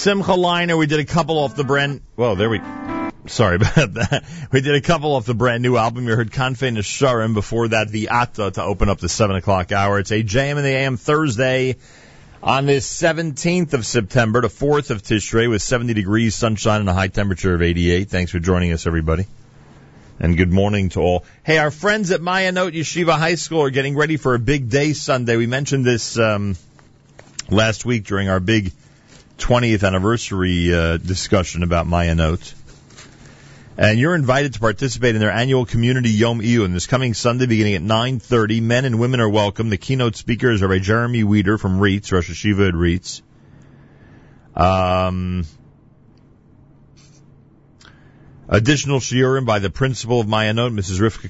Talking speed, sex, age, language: 180 wpm, male, 40-59, English